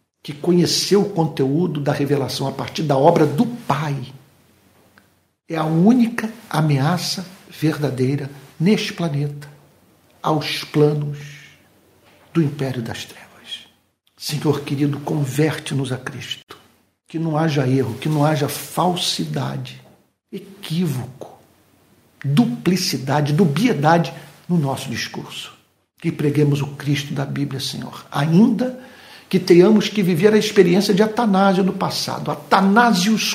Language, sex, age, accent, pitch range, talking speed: Portuguese, male, 60-79, Brazilian, 135-180 Hz, 115 wpm